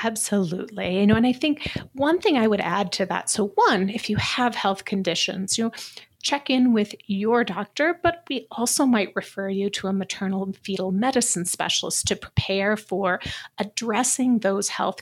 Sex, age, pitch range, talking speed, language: female, 30-49, 195-245 Hz, 185 wpm, English